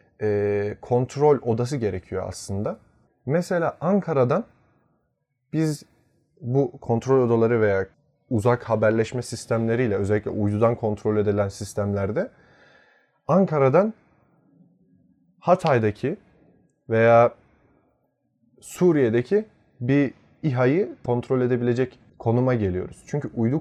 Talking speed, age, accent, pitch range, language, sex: 80 wpm, 30-49, native, 105-135 Hz, Turkish, male